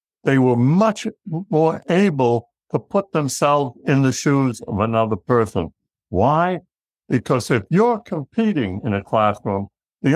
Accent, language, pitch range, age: American, English, 120-175 Hz, 60-79